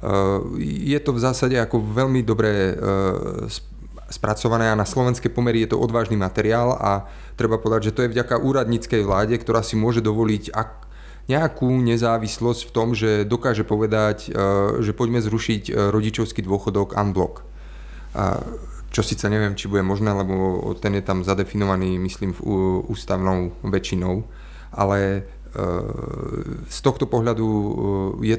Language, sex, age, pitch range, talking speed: Slovak, male, 30-49, 100-120 Hz, 130 wpm